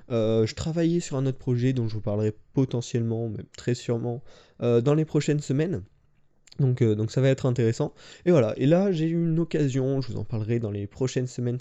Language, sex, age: French, male, 20-39